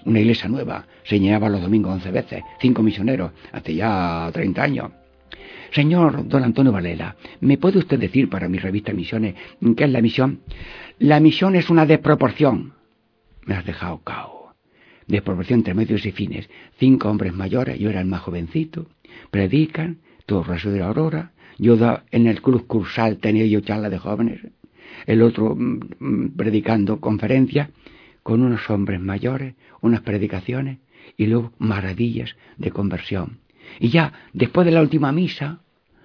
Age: 60-79